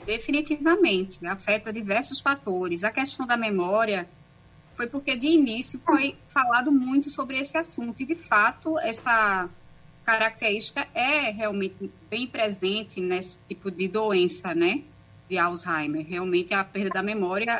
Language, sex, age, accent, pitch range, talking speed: Portuguese, female, 20-39, Brazilian, 190-235 Hz, 135 wpm